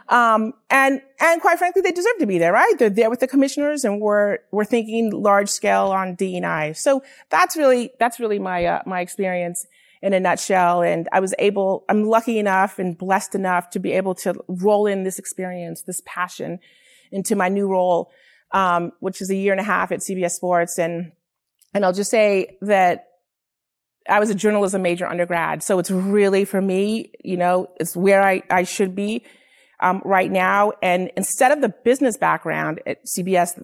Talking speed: 195 wpm